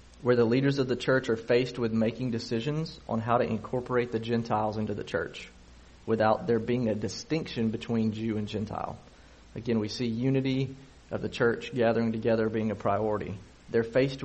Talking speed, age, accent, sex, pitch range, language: 180 wpm, 30-49, American, male, 105-125 Hz, English